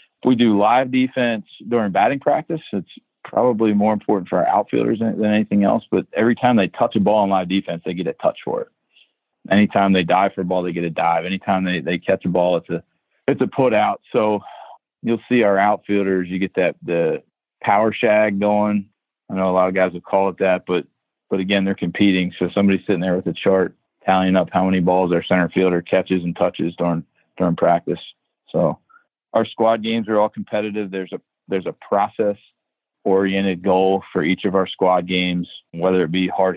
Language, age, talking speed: English, 40-59, 210 wpm